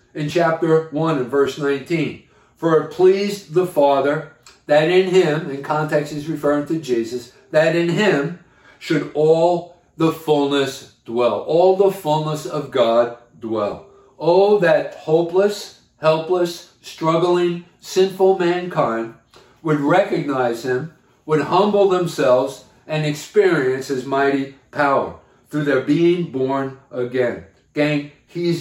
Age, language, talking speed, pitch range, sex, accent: 50-69, English, 125 wpm, 140-165 Hz, male, American